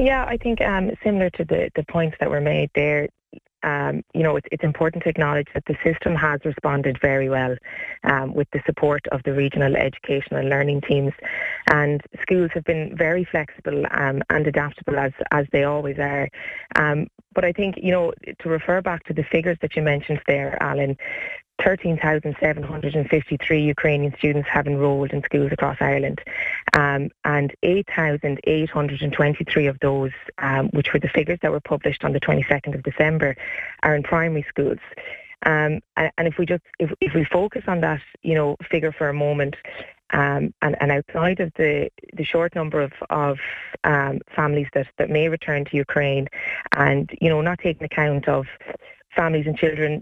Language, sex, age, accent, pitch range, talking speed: English, female, 20-39, Irish, 145-165 Hz, 175 wpm